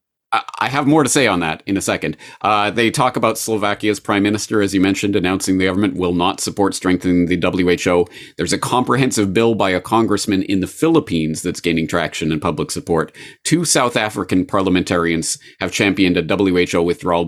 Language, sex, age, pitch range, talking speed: English, male, 30-49, 85-105 Hz, 190 wpm